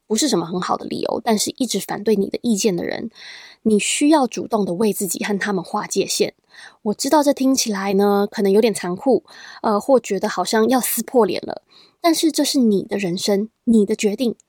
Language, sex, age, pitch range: Chinese, female, 20-39, 200-260 Hz